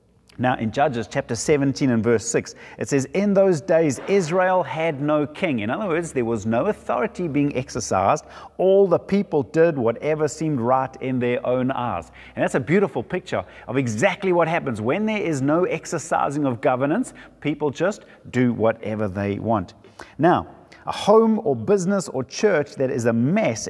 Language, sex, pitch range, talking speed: English, male, 115-170 Hz, 175 wpm